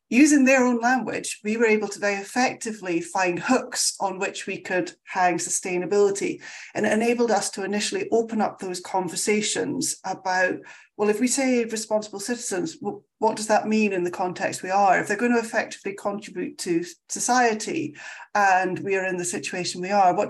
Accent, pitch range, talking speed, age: British, 180-230 Hz, 180 wpm, 40-59